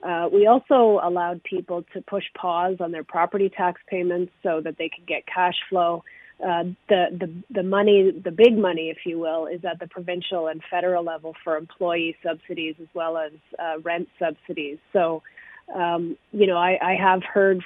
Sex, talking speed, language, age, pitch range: female, 185 wpm, English, 30-49, 165-185 Hz